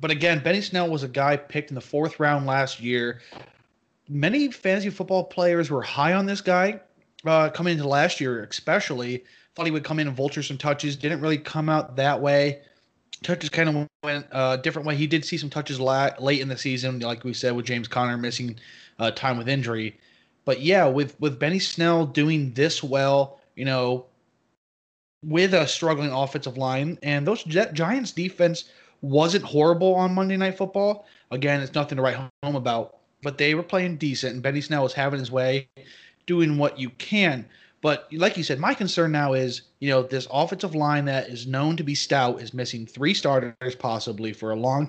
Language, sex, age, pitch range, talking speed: English, male, 20-39, 130-165 Hz, 195 wpm